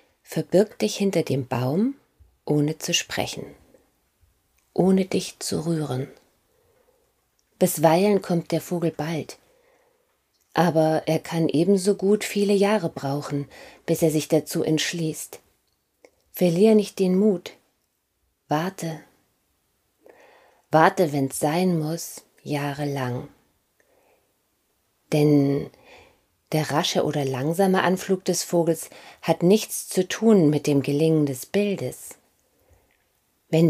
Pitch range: 150-195 Hz